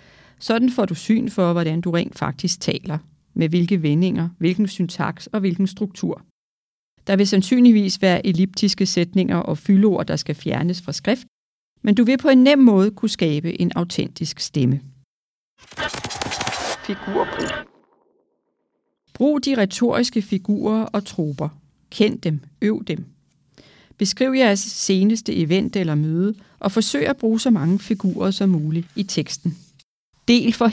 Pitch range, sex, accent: 160-205 Hz, female, native